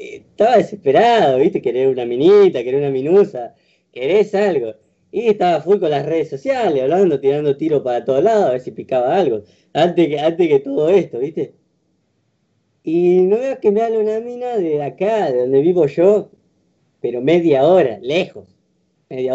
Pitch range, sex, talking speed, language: 140-230 Hz, female, 170 wpm, Spanish